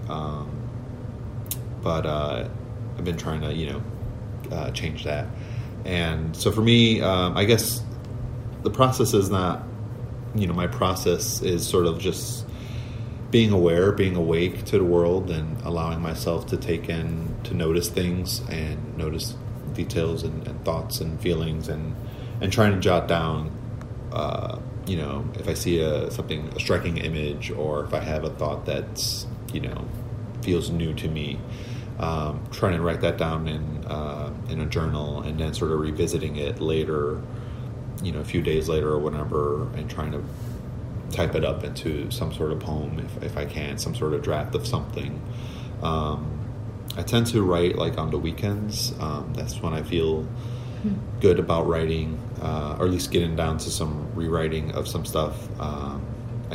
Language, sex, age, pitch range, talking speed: English, male, 30-49, 85-120 Hz, 170 wpm